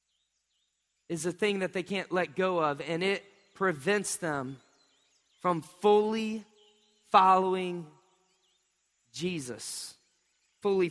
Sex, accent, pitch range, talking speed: male, American, 185-230 Hz, 100 wpm